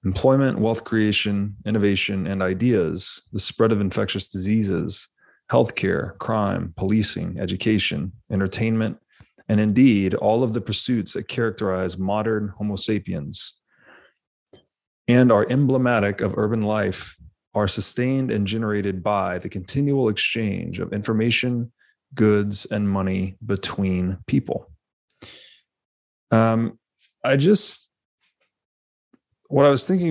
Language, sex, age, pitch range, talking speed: English, male, 30-49, 95-115 Hz, 110 wpm